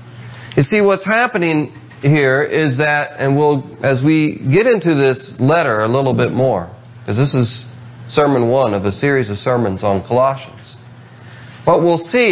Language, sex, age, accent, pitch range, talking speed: English, male, 40-59, American, 120-170 Hz, 165 wpm